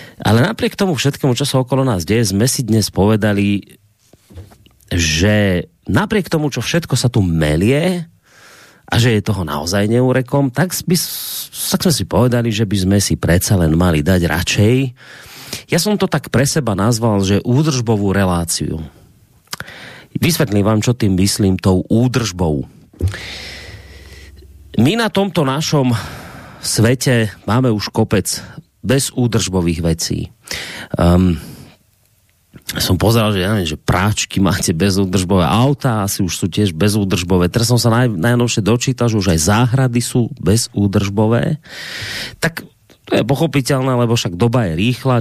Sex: male